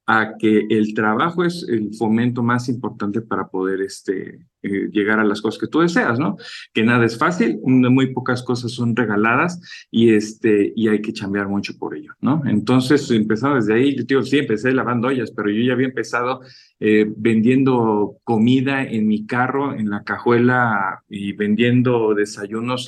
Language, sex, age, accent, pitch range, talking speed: English, male, 50-69, Mexican, 110-135 Hz, 175 wpm